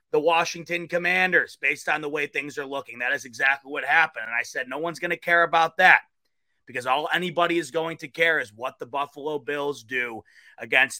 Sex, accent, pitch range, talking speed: male, American, 145-180 Hz, 215 wpm